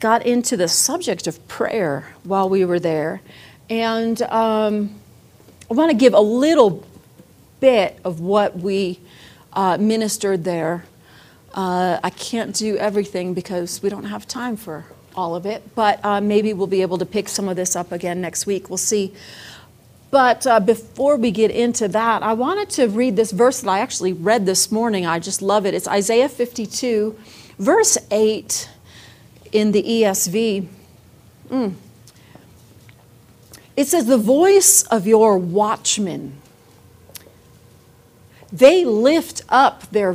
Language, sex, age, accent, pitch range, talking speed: English, female, 40-59, American, 165-230 Hz, 145 wpm